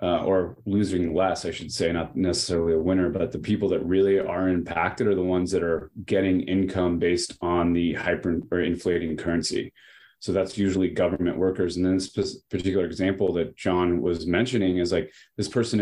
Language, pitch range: English, 90-100 Hz